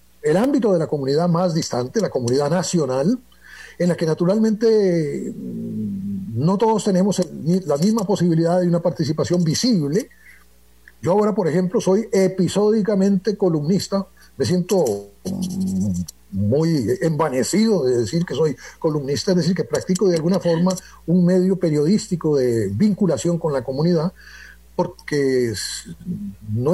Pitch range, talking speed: 140-190 Hz, 130 wpm